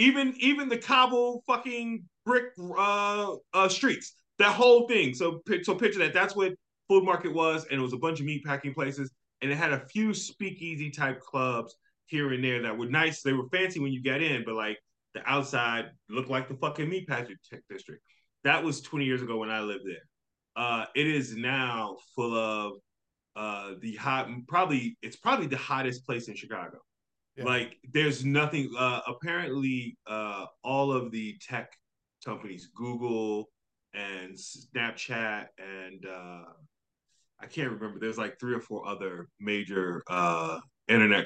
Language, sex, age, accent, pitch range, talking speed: English, male, 20-39, American, 110-150 Hz, 170 wpm